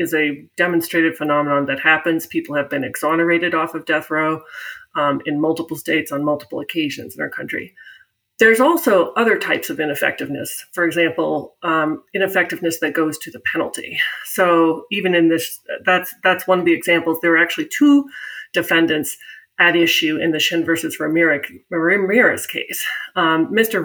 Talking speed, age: 165 wpm, 30-49